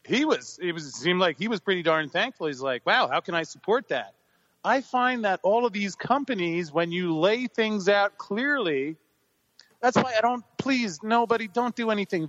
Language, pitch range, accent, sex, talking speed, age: English, 160-220 Hz, American, male, 200 wpm, 30-49